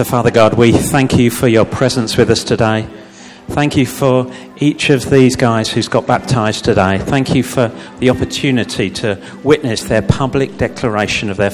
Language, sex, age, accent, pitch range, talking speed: English, male, 50-69, British, 115-160 Hz, 175 wpm